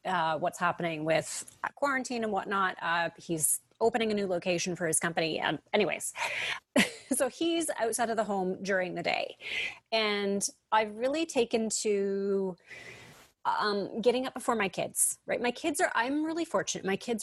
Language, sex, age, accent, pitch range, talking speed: English, female, 30-49, American, 185-240 Hz, 165 wpm